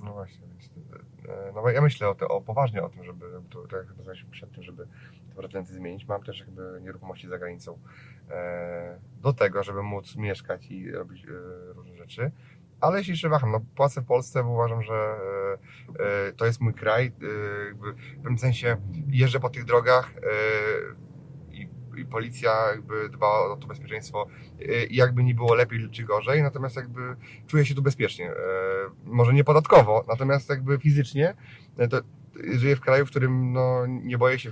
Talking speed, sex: 170 wpm, male